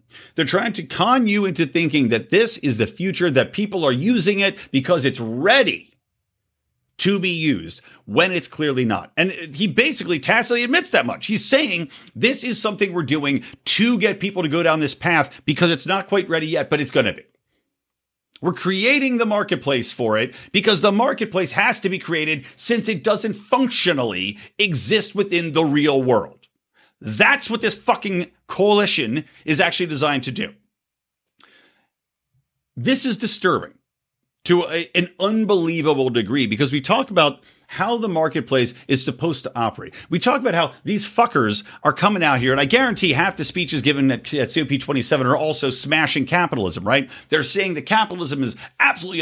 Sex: male